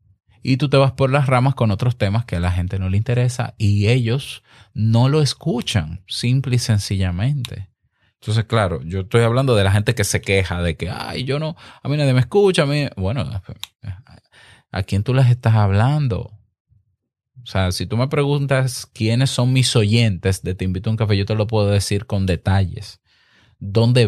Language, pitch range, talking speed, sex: Spanish, 95-115 Hz, 195 wpm, male